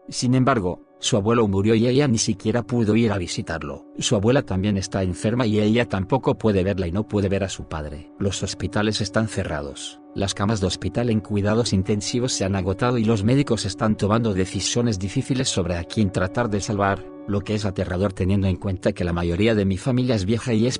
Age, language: 40-59, Spanish